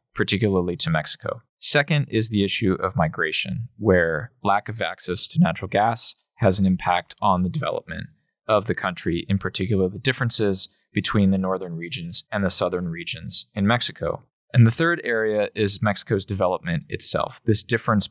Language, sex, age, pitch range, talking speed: English, male, 20-39, 95-115 Hz, 160 wpm